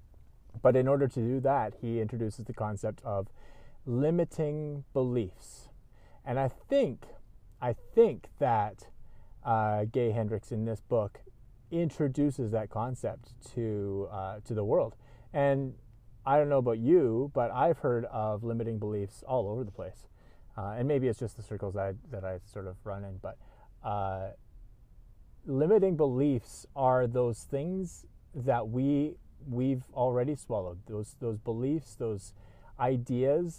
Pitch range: 110-140 Hz